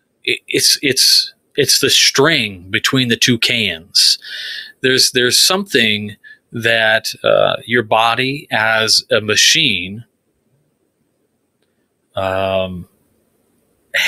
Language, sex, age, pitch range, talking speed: English, male, 30-49, 110-145 Hz, 85 wpm